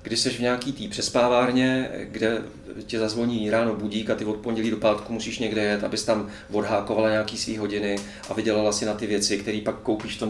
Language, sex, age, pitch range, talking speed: Czech, male, 30-49, 105-120 Hz, 215 wpm